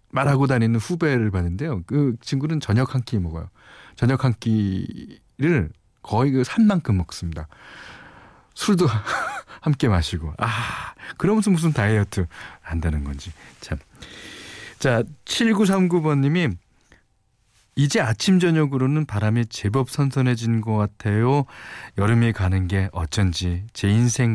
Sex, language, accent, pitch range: male, Korean, native, 100-155 Hz